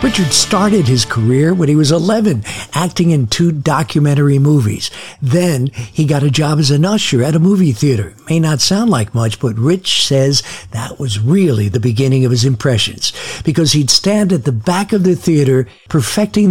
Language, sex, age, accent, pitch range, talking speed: English, male, 60-79, American, 125-165 Hz, 185 wpm